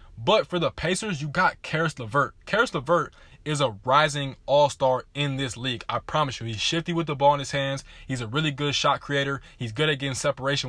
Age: 20-39